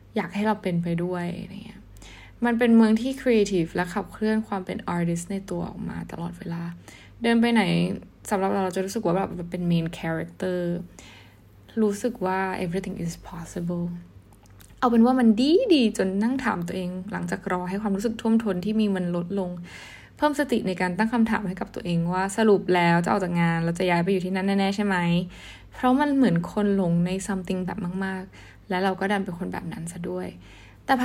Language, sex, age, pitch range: Thai, female, 10-29, 180-215 Hz